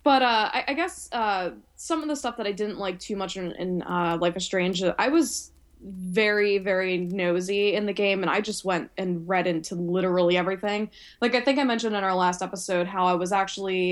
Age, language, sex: 10-29, English, female